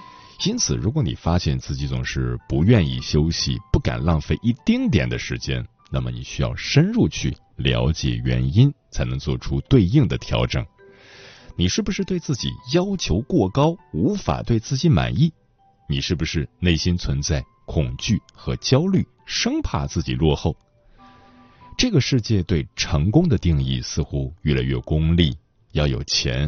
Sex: male